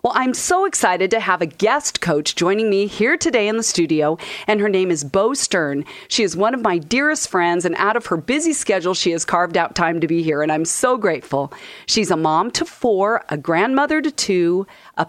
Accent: American